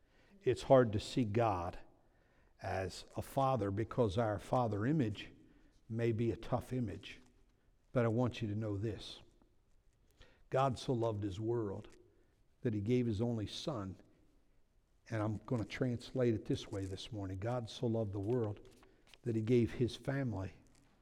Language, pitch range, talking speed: English, 105-130 Hz, 155 wpm